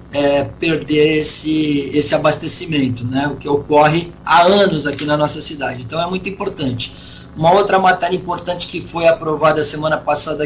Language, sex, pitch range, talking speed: Portuguese, male, 135-155 Hz, 160 wpm